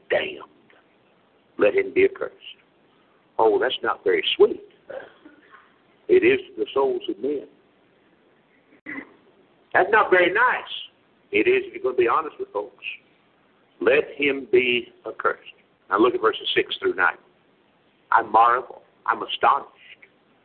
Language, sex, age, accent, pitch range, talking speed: English, male, 60-79, American, 345-435 Hz, 135 wpm